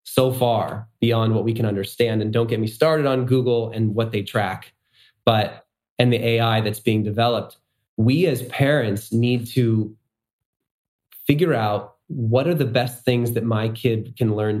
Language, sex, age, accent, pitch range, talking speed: English, male, 30-49, American, 110-130 Hz, 175 wpm